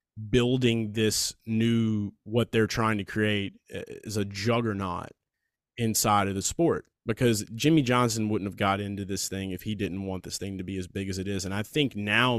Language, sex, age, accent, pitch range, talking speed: English, male, 20-39, American, 100-120 Hz, 200 wpm